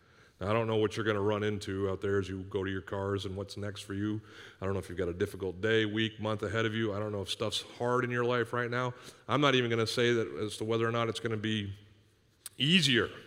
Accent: American